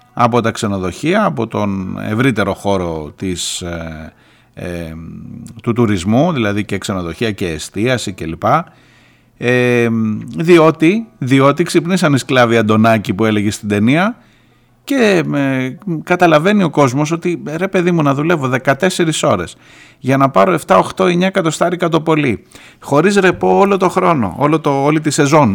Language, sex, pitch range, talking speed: Greek, male, 110-165 Hz, 145 wpm